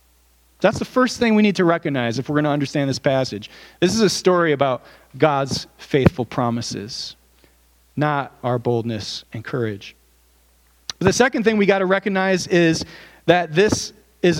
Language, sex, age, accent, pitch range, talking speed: English, male, 40-59, American, 130-175 Hz, 165 wpm